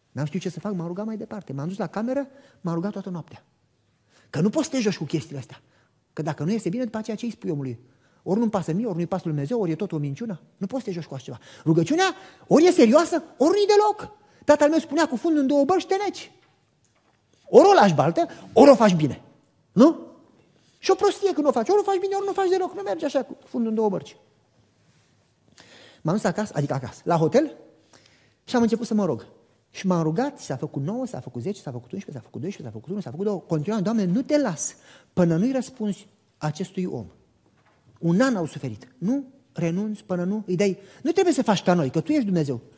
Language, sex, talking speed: Romanian, male, 240 wpm